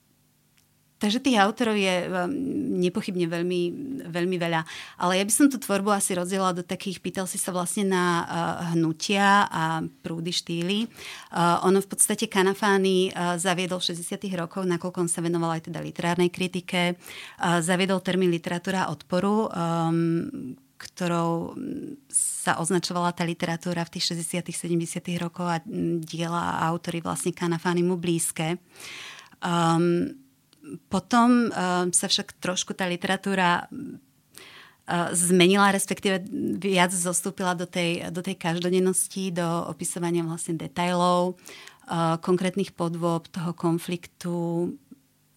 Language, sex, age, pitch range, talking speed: Slovak, female, 30-49, 170-195 Hz, 115 wpm